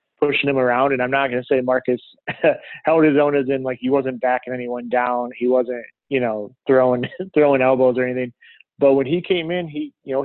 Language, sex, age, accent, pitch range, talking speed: English, male, 30-49, American, 125-135 Hz, 215 wpm